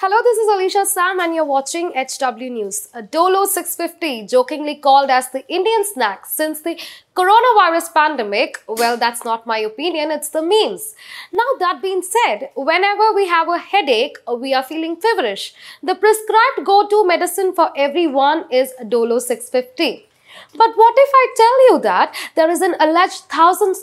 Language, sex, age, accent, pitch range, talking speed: English, female, 20-39, Indian, 260-375 Hz, 165 wpm